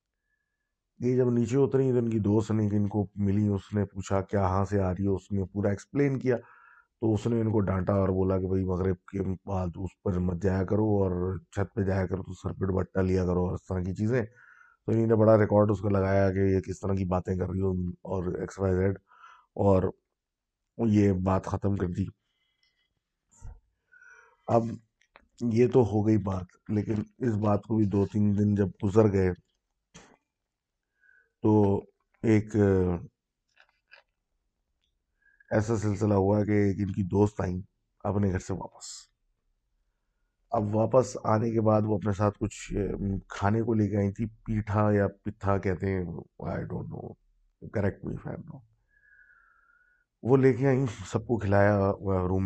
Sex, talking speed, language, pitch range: male, 160 wpm, Urdu, 95-110 Hz